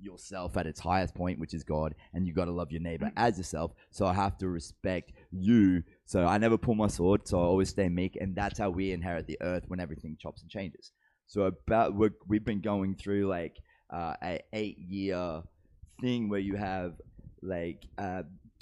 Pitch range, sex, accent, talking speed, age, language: 85-100 Hz, male, Australian, 205 wpm, 20-39, English